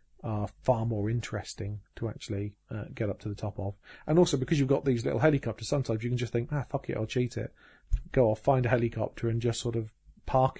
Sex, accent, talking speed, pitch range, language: male, British, 240 wpm, 105-130 Hz, English